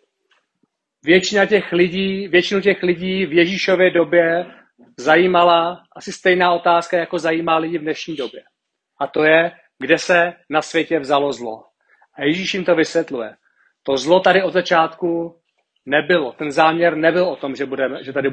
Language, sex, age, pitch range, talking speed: Czech, male, 40-59, 155-185 Hz, 145 wpm